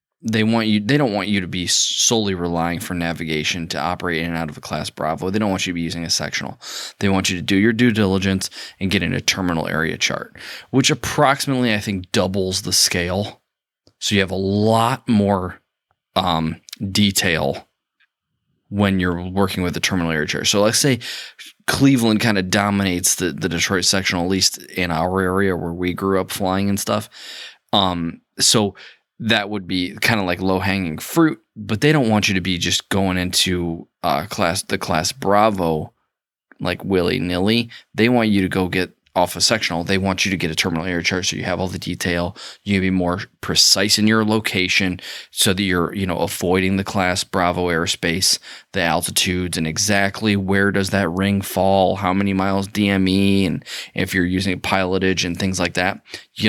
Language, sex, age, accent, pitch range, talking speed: English, male, 20-39, American, 90-100 Hz, 195 wpm